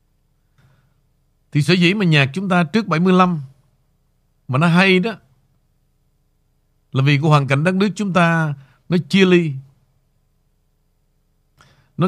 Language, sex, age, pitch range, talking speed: Vietnamese, male, 50-69, 135-180 Hz, 130 wpm